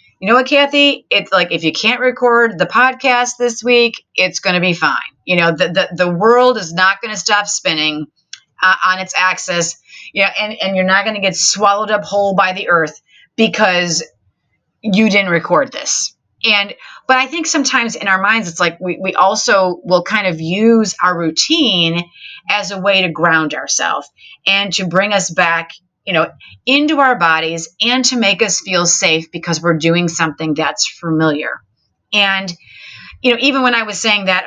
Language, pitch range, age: English, 175-235 Hz, 30-49